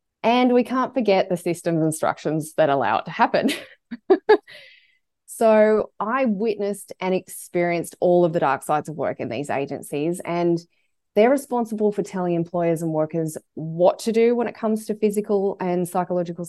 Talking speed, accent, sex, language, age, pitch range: 165 wpm, Australian, female, English, 20-39, 175-230 Hz